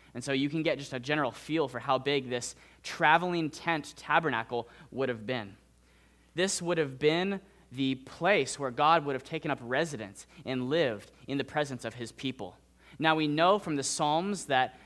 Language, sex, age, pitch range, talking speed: English, male, 20-39, 115-160 Hz, 190 wpm